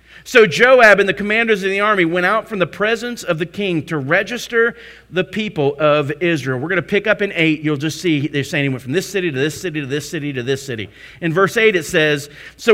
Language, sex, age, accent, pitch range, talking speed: English, male, 40-59, American, 150-215 Hz, 255 wpm